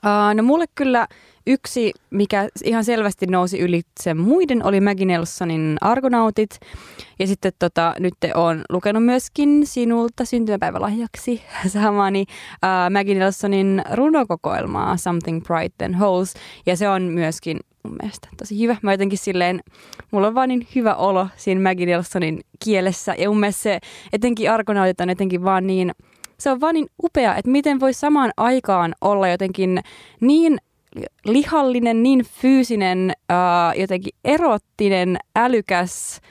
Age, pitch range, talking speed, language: 20-39, 180-235 Hz, 140 wpm, Finnish